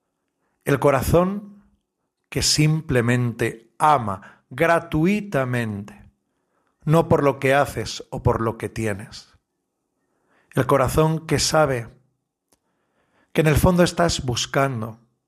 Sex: male